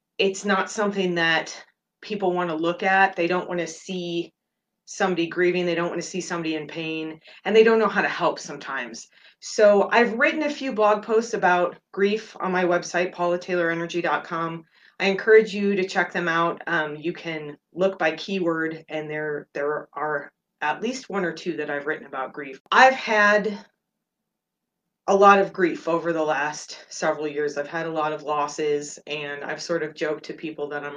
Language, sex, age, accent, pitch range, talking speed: English, female, 30-49, American, 160-200 Hz, 190 wpm